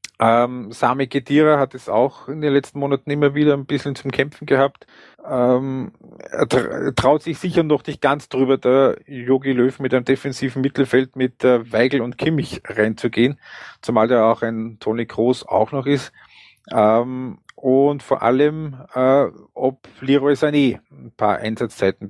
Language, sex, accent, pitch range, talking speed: German, male, Austrian, 120-135 Hz, 160 wpm